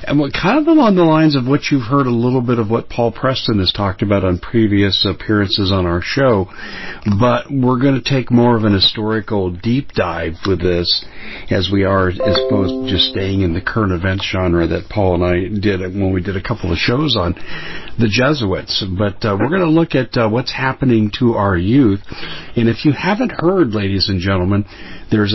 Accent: American